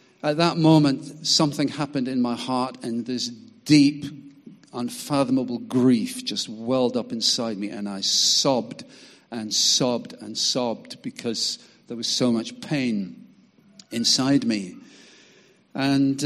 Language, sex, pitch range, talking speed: English, male, 120-155 Hz, 125 wpm